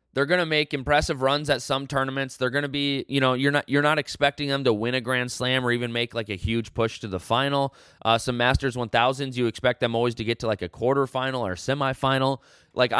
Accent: American